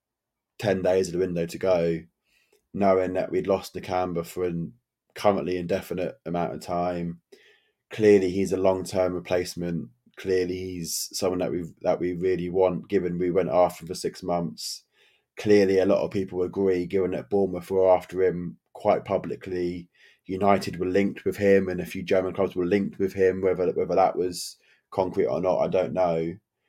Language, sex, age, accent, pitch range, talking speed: English, male, 20-39, British, 90-100 Hz, 175 wpm